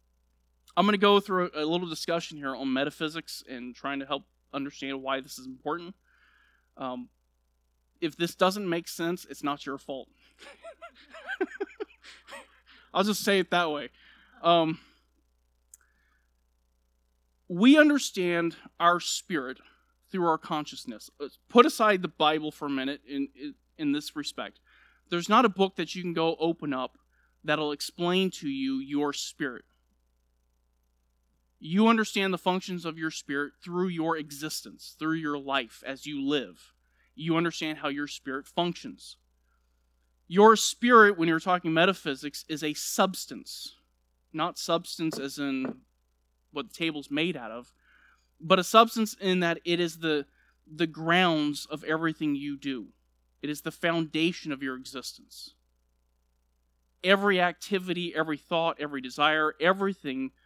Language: English